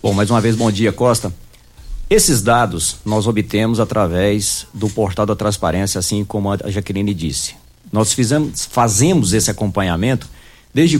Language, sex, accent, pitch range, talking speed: Portuguese, male, Brazilian, 105-140 Hz, 145 wpm